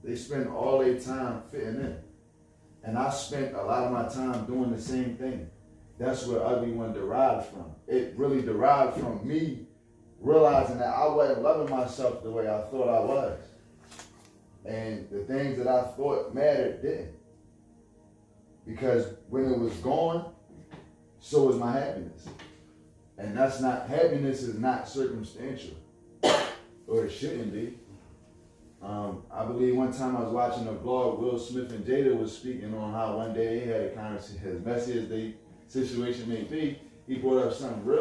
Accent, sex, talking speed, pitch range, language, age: American, male, 165 wpm, 110-135 Hz, English, 30-49